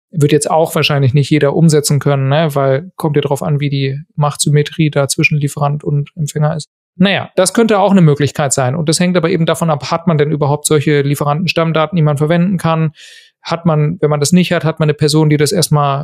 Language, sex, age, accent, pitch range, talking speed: German, male, 40-59, German, 145-170 Hz, 230 wpm